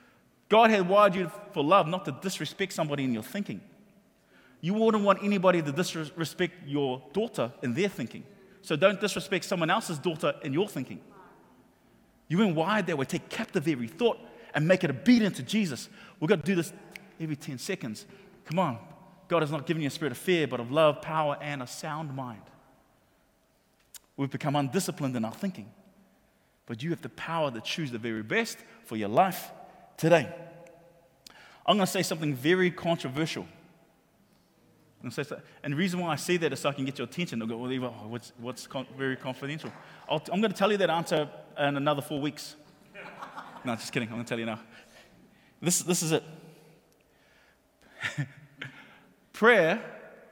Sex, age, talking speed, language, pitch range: male, 30-49, 175 wpm, English, 140-190 Hz